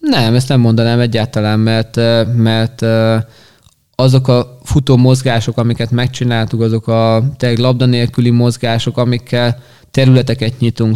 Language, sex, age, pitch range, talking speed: Hungarian, male, 20-39, 115-125 Hz, 110 wpm